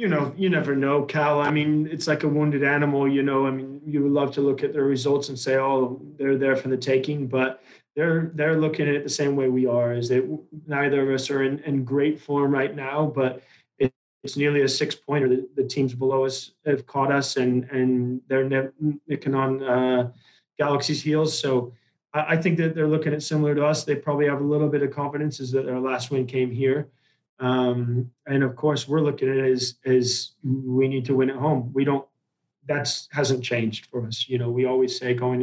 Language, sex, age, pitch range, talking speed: English, male, 20-39, 125-145 Hz, 230 wpm